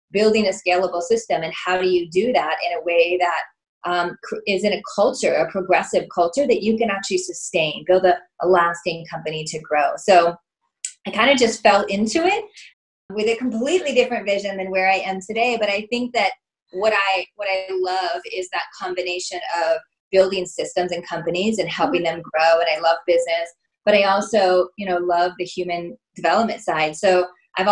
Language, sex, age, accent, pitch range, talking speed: English, female, 30-49, American, 175-210 Hz, 190 wpm